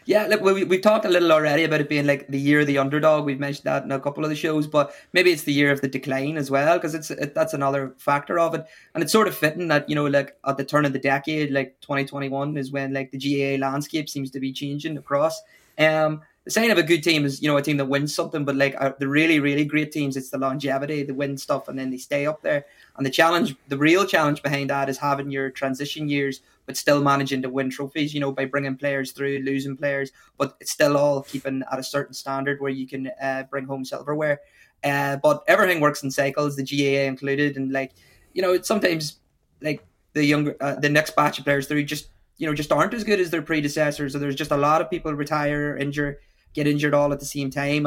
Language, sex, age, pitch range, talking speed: English, male, 20-39, 135-150 Hz, 250 wpm